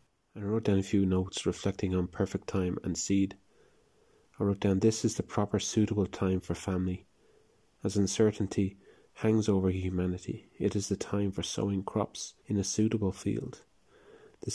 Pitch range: 95-105 Hz